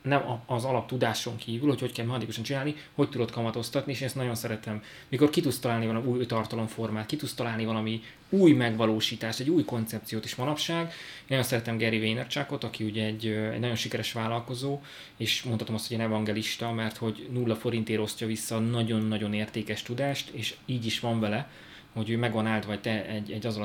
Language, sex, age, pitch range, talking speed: Hungarian, male, 20-39, 110-125 Hz, 190 wpm